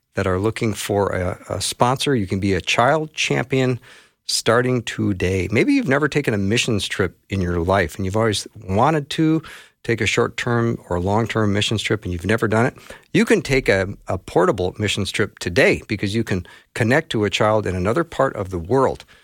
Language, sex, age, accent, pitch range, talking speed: English, male, 50-69, American, 100-125 Hz, 200 wpm